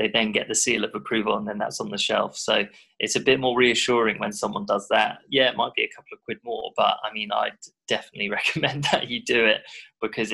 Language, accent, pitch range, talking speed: English, British, 105-130 Hz, 250 wpm